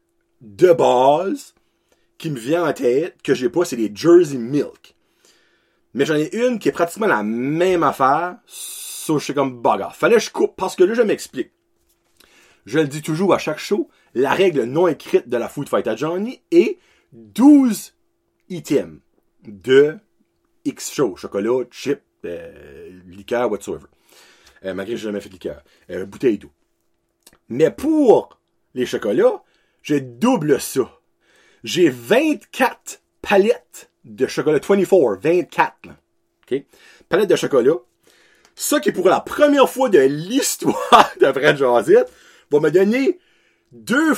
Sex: male